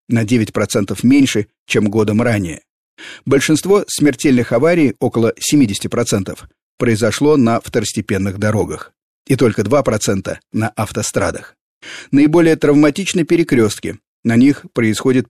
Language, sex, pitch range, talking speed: Russian, male, 105-135 Hz, 100 wpm